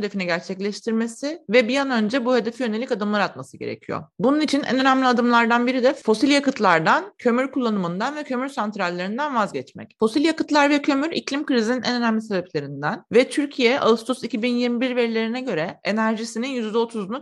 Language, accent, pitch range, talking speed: Turkish, native, 215-260 Hz, 155 wpm